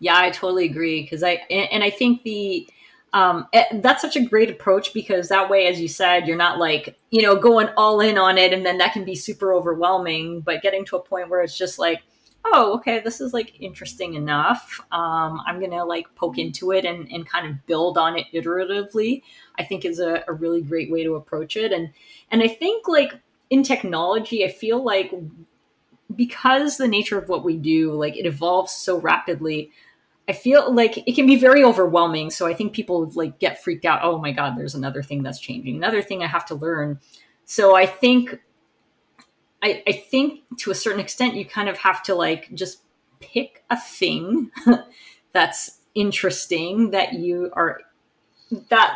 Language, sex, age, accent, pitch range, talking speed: English, female, 30-49, American, 170-225 Hz, 195 wpm